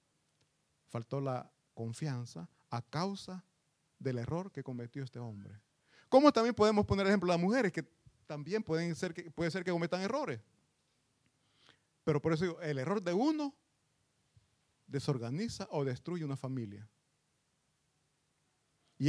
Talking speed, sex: 130 wpm, male